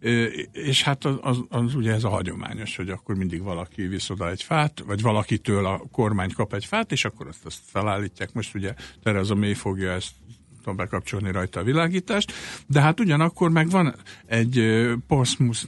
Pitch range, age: 100-125 Hz, 60-79